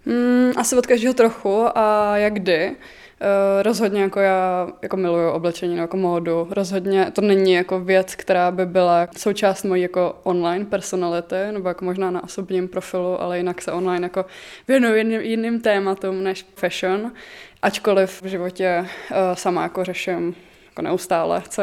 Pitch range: 180-200 Hz